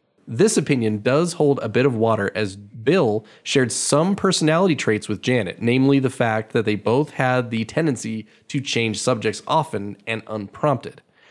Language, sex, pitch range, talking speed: English, male, 120-160 Hz, 165 wpm